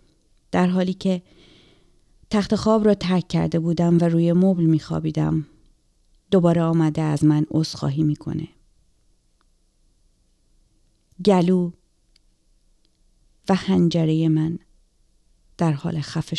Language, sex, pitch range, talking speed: Persian, female, 160-185 Hz, 100 wpm